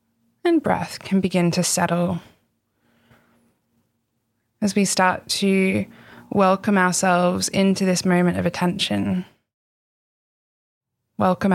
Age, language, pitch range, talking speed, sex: 20-39, English, 115-185 Hz, 95 wpm, female